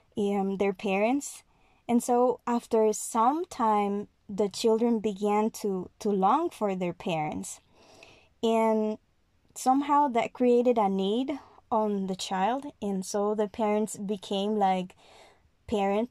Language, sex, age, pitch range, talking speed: English, female, 20-39, 200-240 Hz, 125 wpm